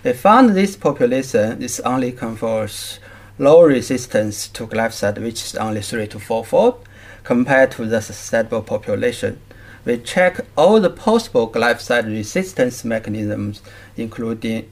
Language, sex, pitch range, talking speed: English, male, 110-145 Hz, 125 wpm